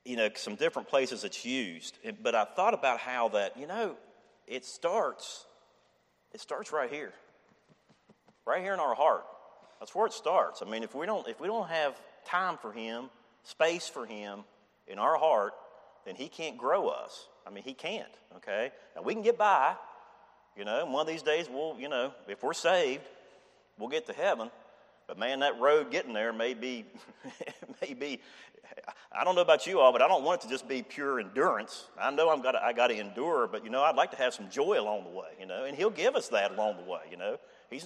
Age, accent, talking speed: 40-59, American, 215 wpm